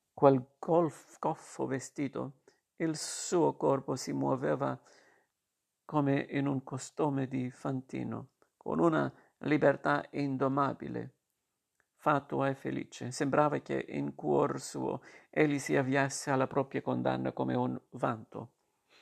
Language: Italian